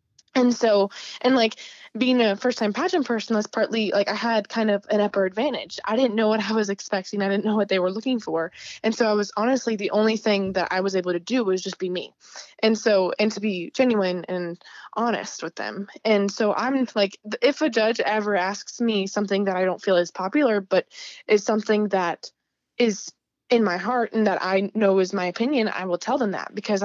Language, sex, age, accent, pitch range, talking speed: English, female, 20-39, American, 195-235 Hz, 225 wpm